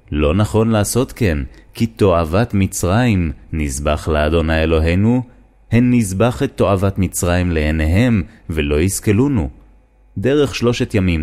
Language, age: Hebrew, 30-49